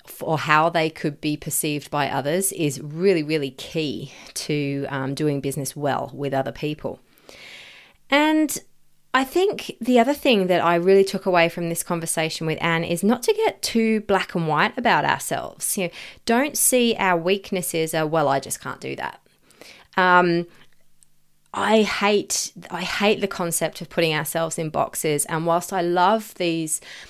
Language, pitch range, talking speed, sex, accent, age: English, 155-185 Hz, 160 wpm, female, Australian, 30-49